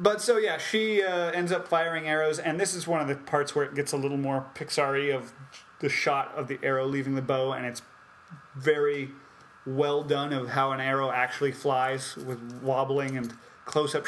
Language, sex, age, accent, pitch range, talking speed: English, male, 30-49, American, 135-160 Hz, 200 wpm